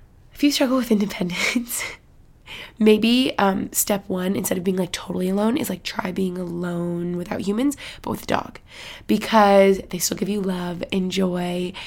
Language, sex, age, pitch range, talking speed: English, female, 20-39, 185-230 Hz, 170 wpm